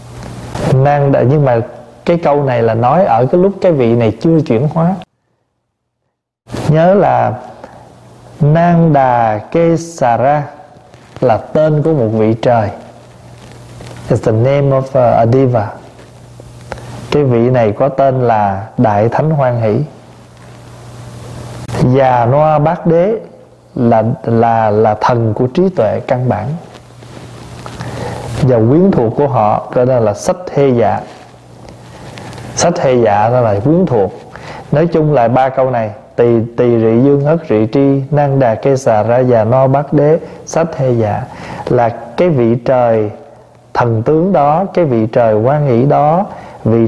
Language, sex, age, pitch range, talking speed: Vietnamese, male, 20-39, 115-155 Hz, 140 wpm